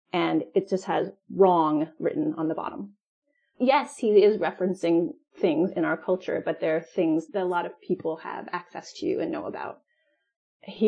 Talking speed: 180 wpm